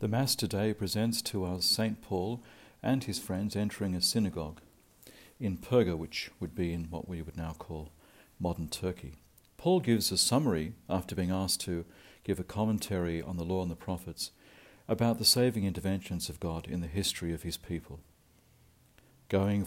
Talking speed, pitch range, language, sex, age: 175 wpm, 85-110 Hz, English, male, 50-69